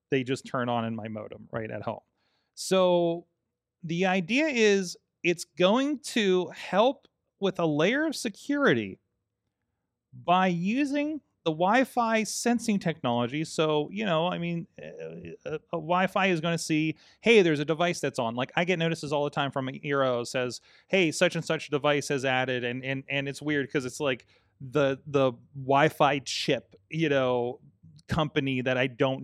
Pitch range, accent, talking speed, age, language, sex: 120-170 Hz, American, 170 wpm, 30-49, English, male